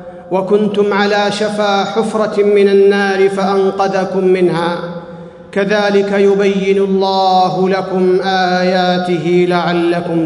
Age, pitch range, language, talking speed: 40-59, 190-220 Hz, Arabic, 80 wpm